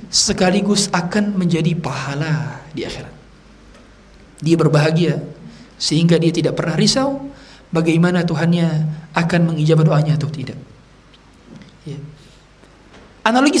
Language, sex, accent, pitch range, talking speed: Indonesian, male, native, 160-230 Hz, 95 wpm